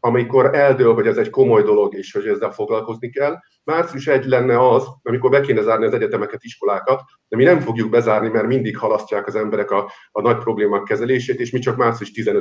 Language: Hungarian